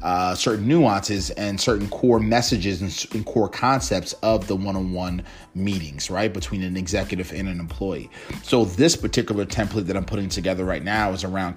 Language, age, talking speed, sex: English, 30-49, 175 wpm, male